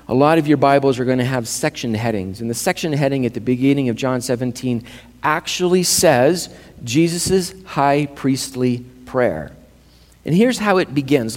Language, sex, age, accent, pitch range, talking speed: English, male, 40-59, American, 105-155 Hz, 170 wpm